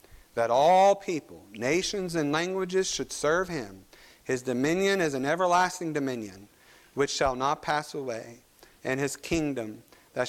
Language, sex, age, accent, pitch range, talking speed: English, male, 40-59, American, 160-230 Hz, 140 wpm